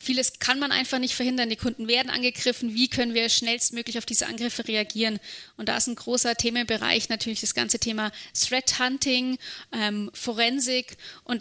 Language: German